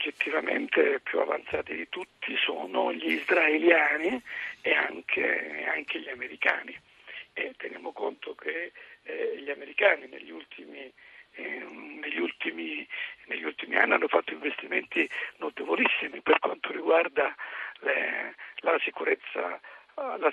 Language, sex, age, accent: Italian, male, 50-69, native